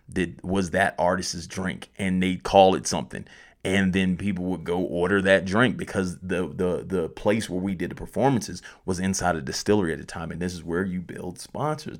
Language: English